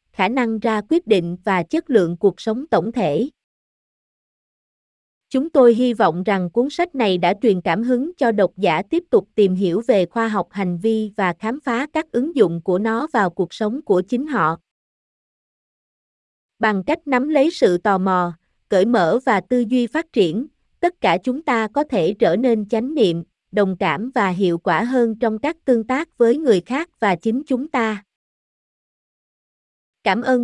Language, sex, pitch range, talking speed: Vietnamese, female, 195-250 Hz, 185 wpm